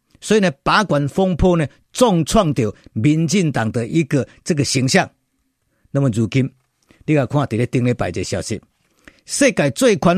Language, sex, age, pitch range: Chinese, male, 50-69, 125-185 Hz